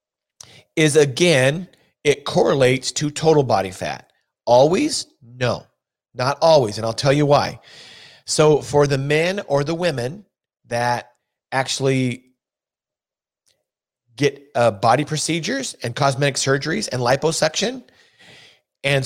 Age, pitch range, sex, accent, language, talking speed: 40-59, 120-155 Hz, male, American, English, 115 wpm